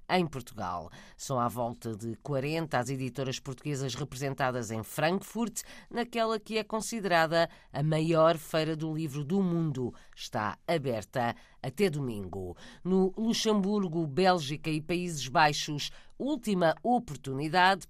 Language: Portuguese